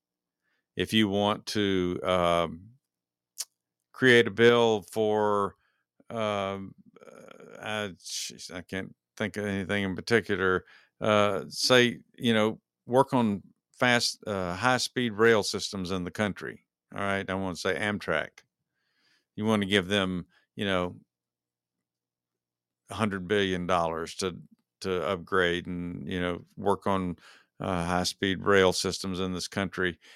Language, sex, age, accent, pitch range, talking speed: English, male, 50-69, American, 85-105 Hz, 135 wpm